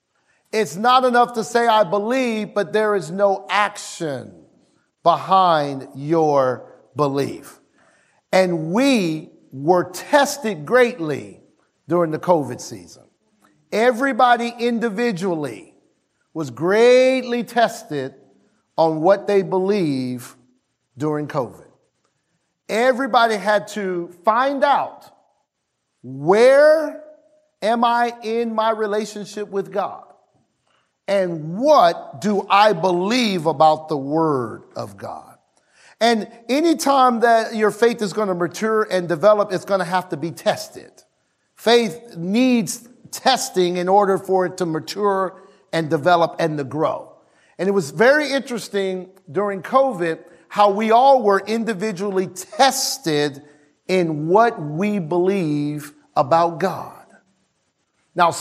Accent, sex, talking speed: American, male, 115 wpm